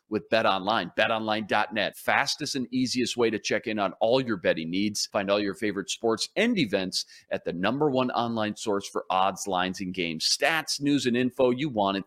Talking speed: 205 wpm